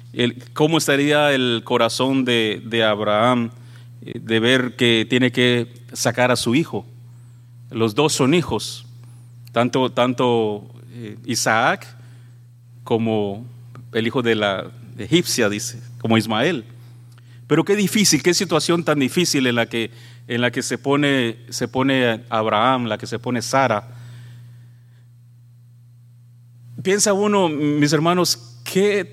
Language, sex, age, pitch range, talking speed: English, male, 40-59, 115-135 Hz, 115 wpm